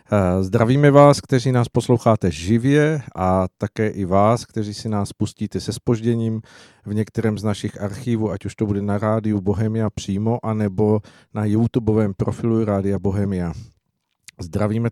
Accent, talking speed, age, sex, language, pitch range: native, 145 wpm, 50-69, male, Czech, 100-115 Hz